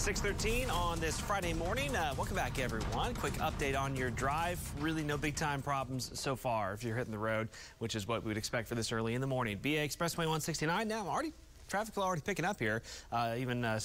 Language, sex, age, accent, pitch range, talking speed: English, male, 30-49, American, 115-155 Hz, 220 wpm